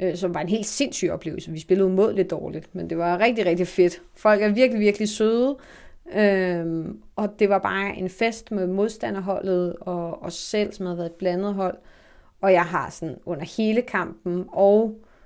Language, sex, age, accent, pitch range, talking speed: Danish, female, 30-49, native, 175-210 Hz, 185 wpm